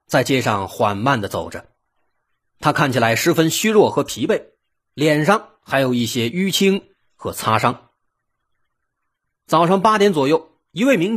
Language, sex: Chinese, male